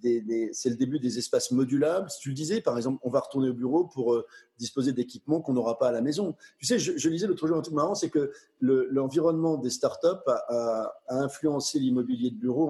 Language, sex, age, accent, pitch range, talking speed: French, male, 30-49, French, 120-145 Hz, 235 wpm